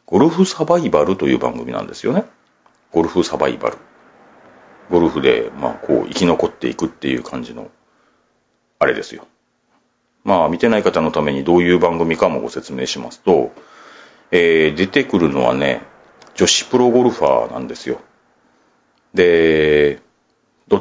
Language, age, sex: Japanese, 40-59, male